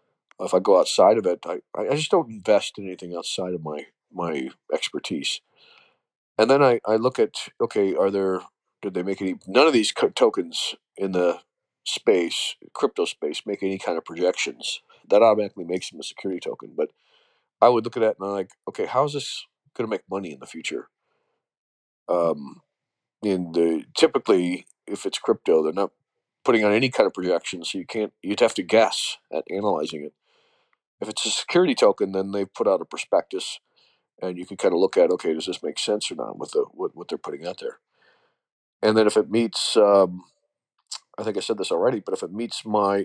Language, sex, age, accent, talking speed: English, male, 40-59, American, 205 wpm